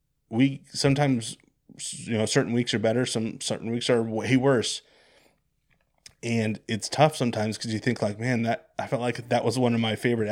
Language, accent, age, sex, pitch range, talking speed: English, American, 20-39, male, 110-125 Hz, 190 wpm